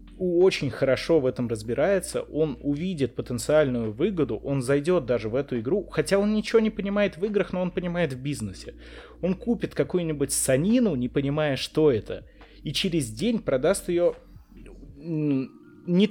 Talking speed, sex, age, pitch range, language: 155 wpm, male, 20-39, 125-180 Hz, Russian